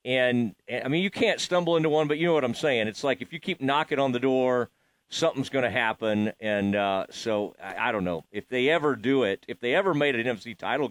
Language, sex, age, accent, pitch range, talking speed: English, male, 40-59, American, 125-165 Hz, 255 wpm